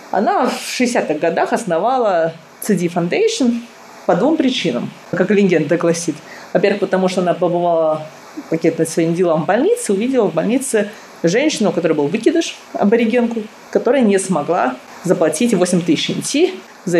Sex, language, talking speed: female, Russian, 140 wpm